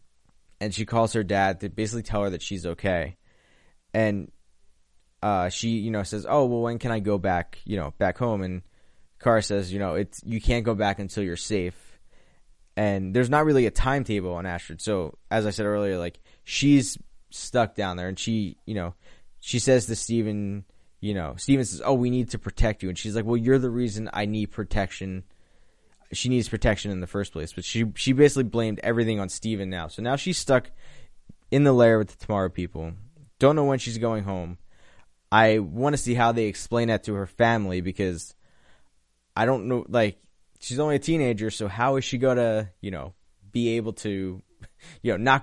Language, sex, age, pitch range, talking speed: English, male, 20-39, 95-120 Hz, 205 wpm